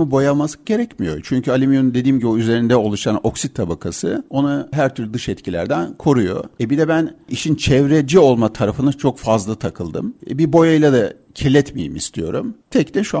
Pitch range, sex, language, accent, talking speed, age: 100-140 Hz, male, Turkish, native, 165 wpm, 50-69